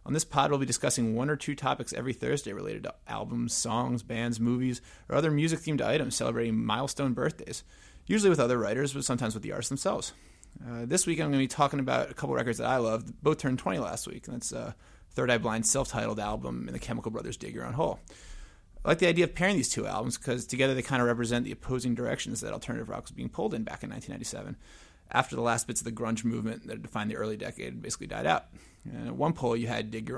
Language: English